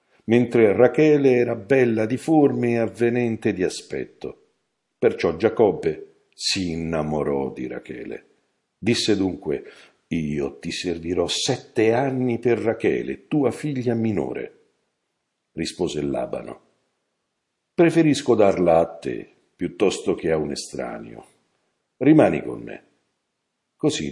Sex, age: male, 60-79